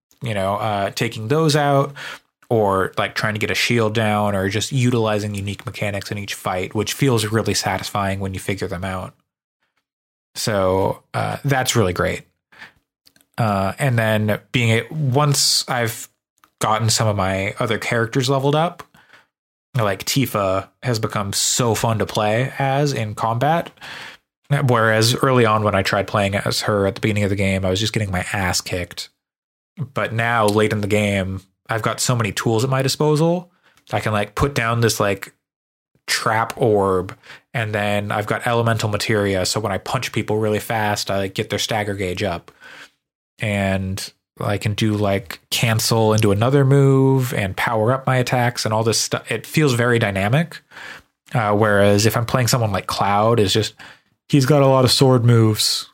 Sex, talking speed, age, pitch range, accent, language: male, 175 wpm, 20-39, 100-130 Hz, American, English